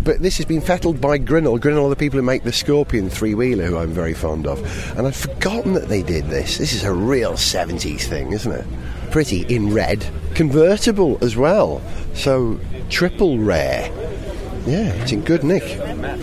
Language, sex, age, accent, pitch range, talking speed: English, male, 30-49, British, 85-130 Hz, 185 wpm